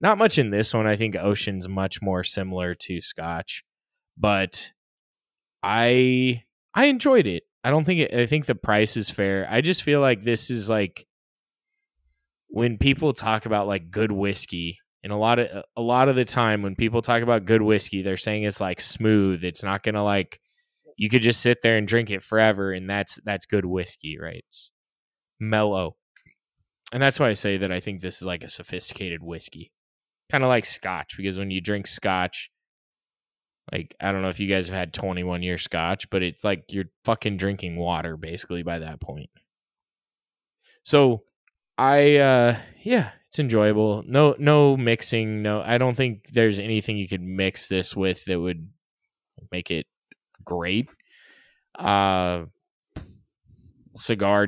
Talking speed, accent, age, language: 175 wpm, American, 10-29, English